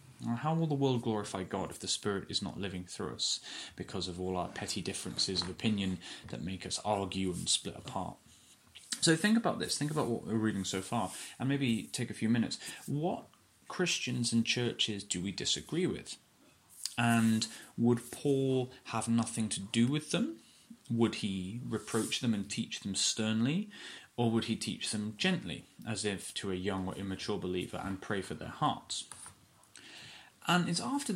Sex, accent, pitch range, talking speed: male, British, 105-145 Hz, 180 wpm